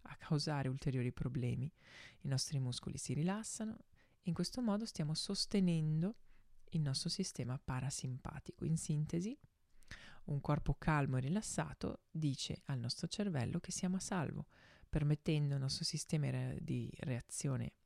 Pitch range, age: 135-175 Hz, 20-39